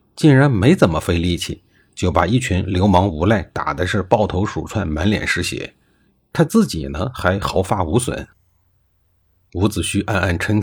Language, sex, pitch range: Chinese, male, 85-130 Hz